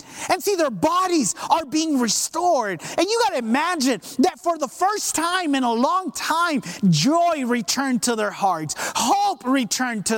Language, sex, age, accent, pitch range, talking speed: English, male, 30-49, American, 240-355 Hz, 170 wpm